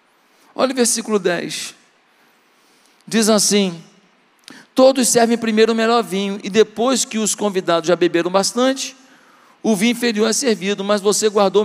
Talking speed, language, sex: 145 wpm, Portuguese, male